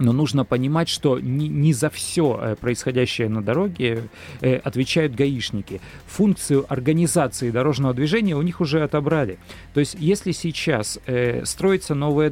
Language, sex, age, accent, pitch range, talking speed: Russian, male, 40-59, native, 120-160 Hz, 125 wpm